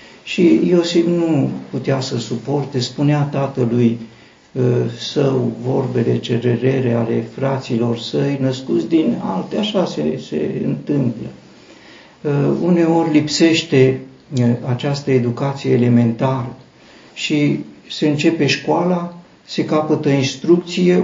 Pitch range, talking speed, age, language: 135-175 Hz, 95 wpm, 50-69, Romanian